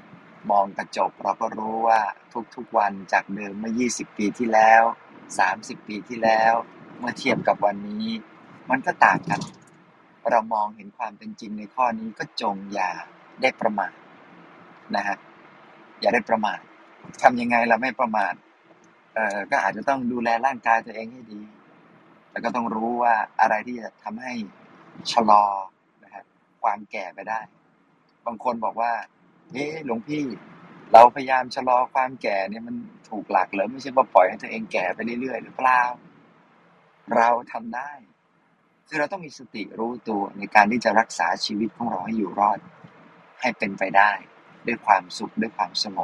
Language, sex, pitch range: Thai, male, 105-125 Hz